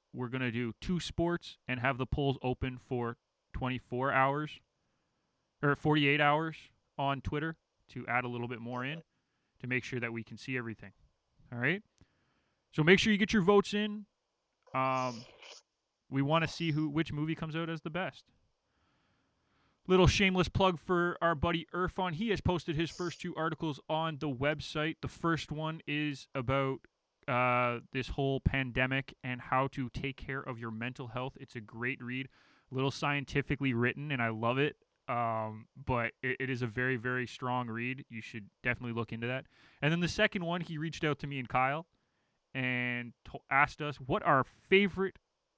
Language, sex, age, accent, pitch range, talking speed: English, male, 20-39, American, 125-160 Hz, 185 wpm